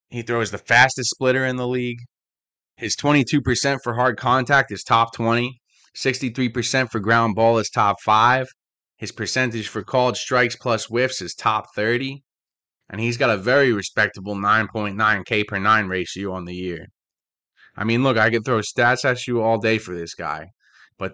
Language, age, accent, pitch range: English, 20-39, American, 110-130 Hz